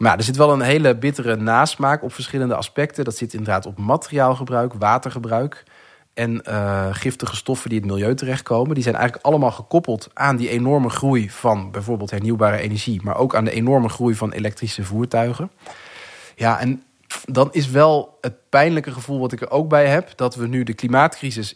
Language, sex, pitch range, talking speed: Dutch, male, 110-135 Hz, 185 wpm